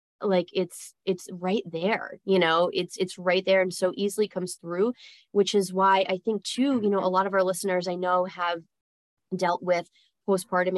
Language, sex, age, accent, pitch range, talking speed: English, female, 20-39, American, 180-205 Hz, 195 wpm